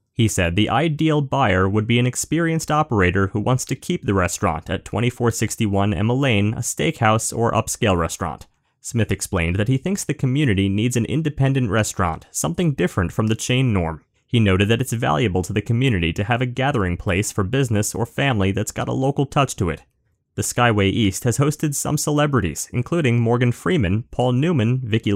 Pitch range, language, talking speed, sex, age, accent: 100-140 Hz, English, 190 wpm, male, 30-49, American